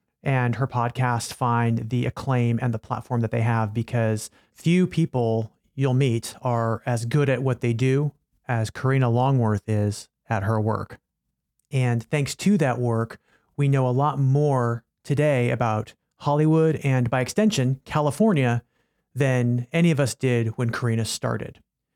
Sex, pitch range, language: male, 120-145 Hz, English